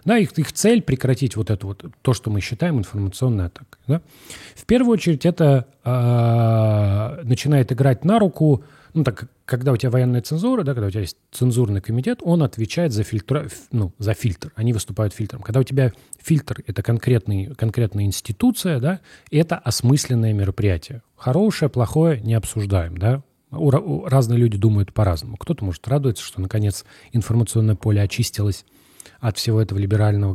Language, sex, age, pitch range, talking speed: English, male, 30-49, 105-140 Hz, 160 wpm